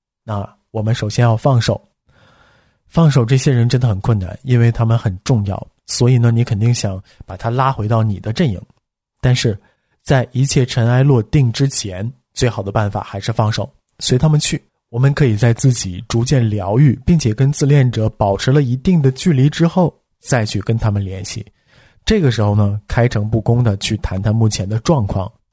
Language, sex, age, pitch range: Chinese, male, 20-39, 105-130 Hz